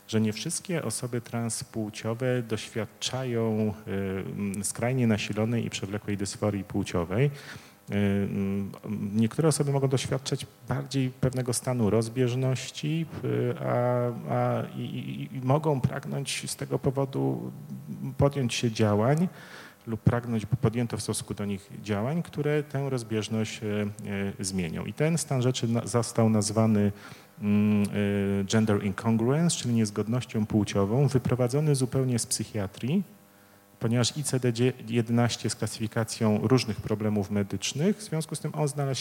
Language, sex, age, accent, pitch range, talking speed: Polish, male, 40-59, native, 100-130 Hz, 110 wpm